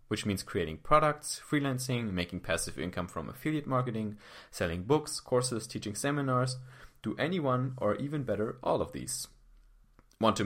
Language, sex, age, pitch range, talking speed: English, male, 30-49, 95-130 Hz, 150 wpm